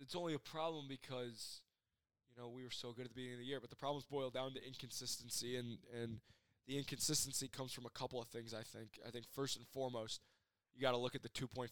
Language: English